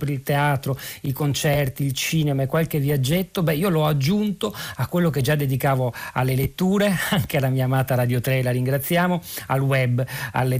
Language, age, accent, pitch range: Italian, 40-59, native, 130-155 Hz